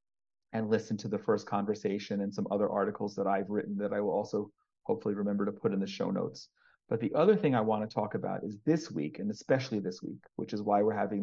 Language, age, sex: English, 40-59, male